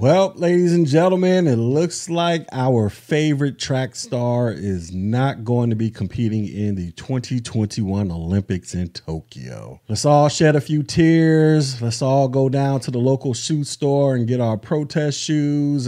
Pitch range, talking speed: 120-165 Hz, 165 wpm